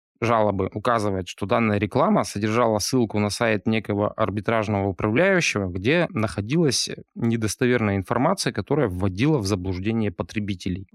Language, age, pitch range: Russian, 20-39, 105-125 Hz